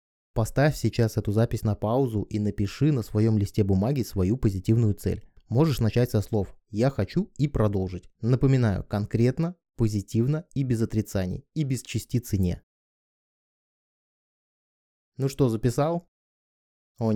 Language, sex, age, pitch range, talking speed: Russian, male, 20-39, 105-130 Hz, 130 wpm